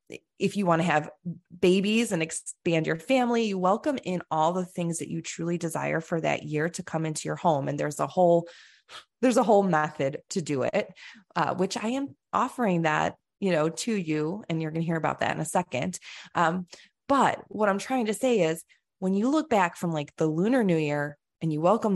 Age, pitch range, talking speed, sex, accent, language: 20-39, 155-195 Hz, 220 wpm, female, American, English